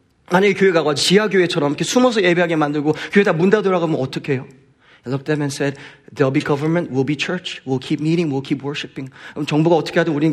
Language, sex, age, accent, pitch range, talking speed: English, male, 40-59, Korean, 135-175 Hz, 200 wpm